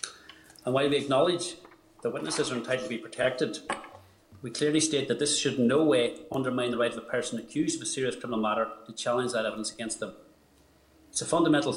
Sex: male